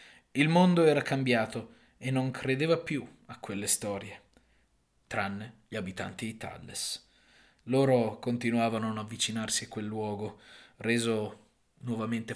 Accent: native